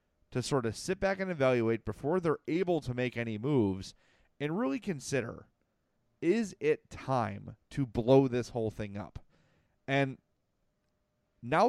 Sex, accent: male, American